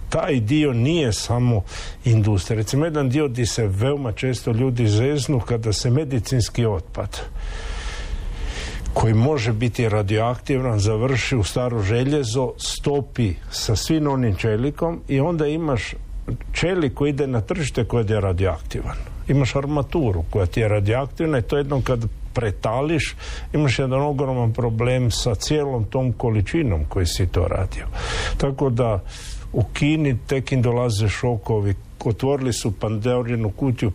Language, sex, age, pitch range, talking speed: Croatian, male, 60-79, 105-130 Hz, 140 wpm